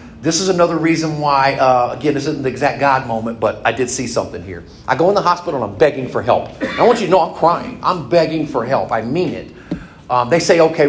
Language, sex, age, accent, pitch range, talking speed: English, male, 40-59, American, 125-170 Hz, 260 wpm